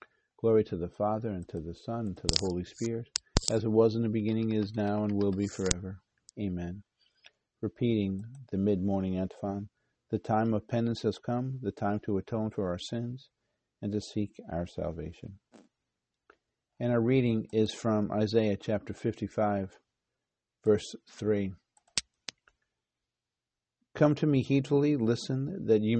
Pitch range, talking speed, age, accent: 95-115 Hz, 150 wpm, 50-69, American